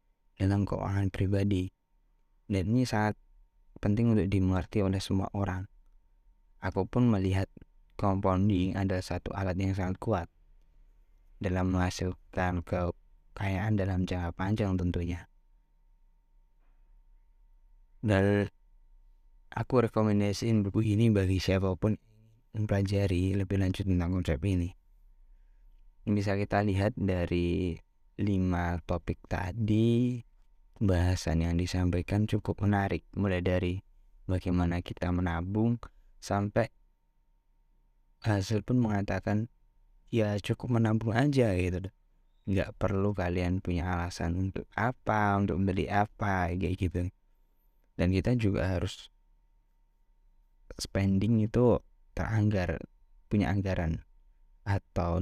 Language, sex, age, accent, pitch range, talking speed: Indonesian, male, 10-29, native, 90-105 Hz, 100 wpm